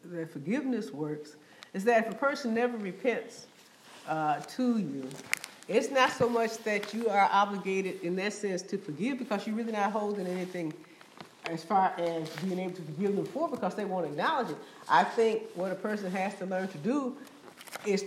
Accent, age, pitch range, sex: American, 50-69, 180-225 Hz, female